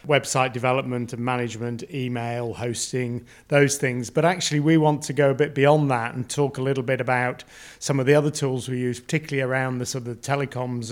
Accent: British